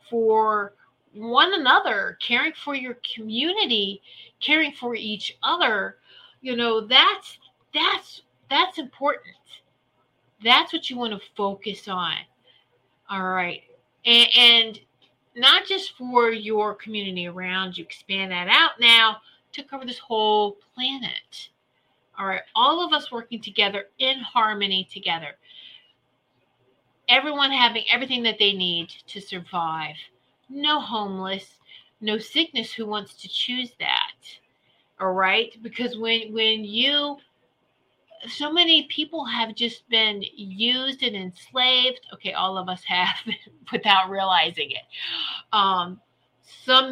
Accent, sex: American, female